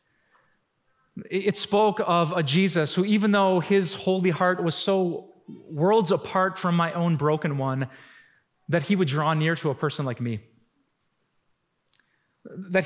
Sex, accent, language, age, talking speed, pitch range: male, American, English, 30-49, 145 wpm, 140-180 Hz